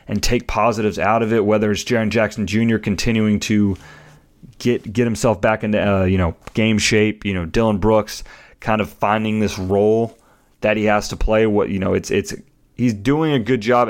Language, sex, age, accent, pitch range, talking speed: English, male, 30-49, American, 100-115 Hz, 205 wpm